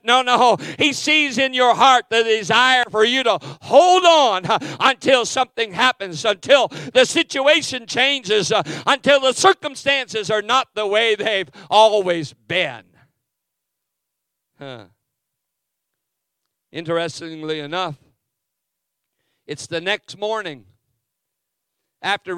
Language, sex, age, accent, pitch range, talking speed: English, male, 50-69, American, 160-245 Hz, 105 wpm